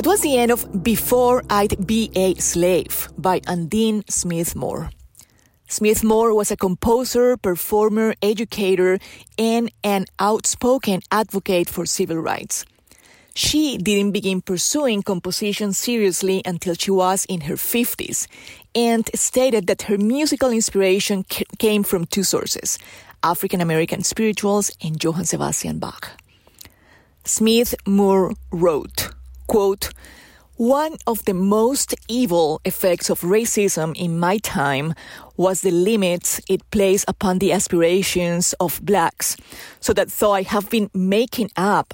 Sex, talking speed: female, 125 wpm